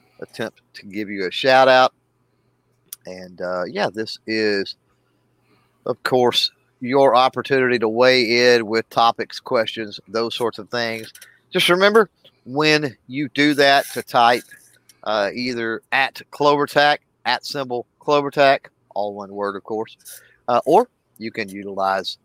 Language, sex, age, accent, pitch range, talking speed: English, male, 40-59, American, 105-130 Hz, 140 wpm